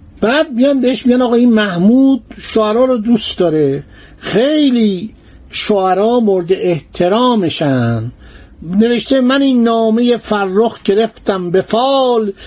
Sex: male